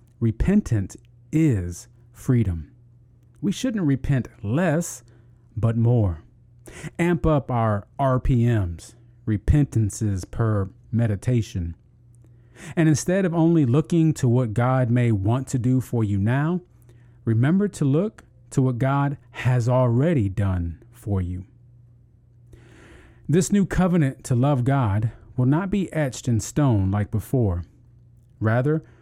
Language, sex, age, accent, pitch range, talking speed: English, male, 40-59, American, 115-140 Hz, 120 wpm